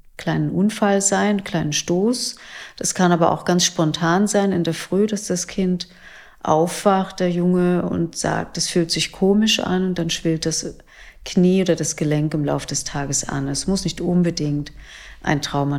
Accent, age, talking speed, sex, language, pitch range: German, 40-59, 180 wpm, female, German, 160-185 Hz